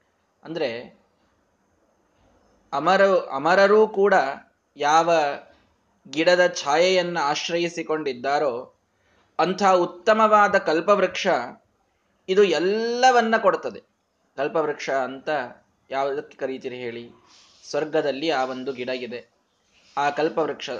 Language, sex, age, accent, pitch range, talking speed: Kannada, male, 20-39, native, 135-195 Hz, 75 wpm